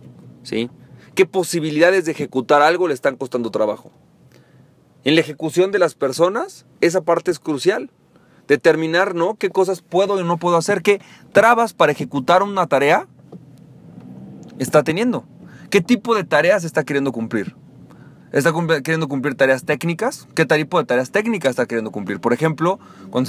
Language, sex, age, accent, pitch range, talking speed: Spanish, male, 40-59, Mexican, 135-175 Hz, 155 wpm